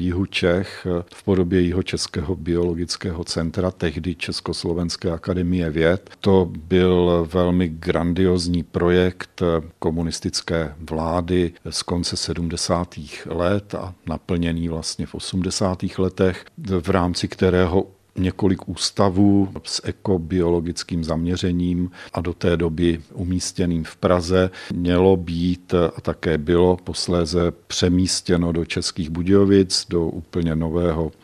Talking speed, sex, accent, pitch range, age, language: 110 wpm, male, native, 85-95 Hz, 50-69, Czech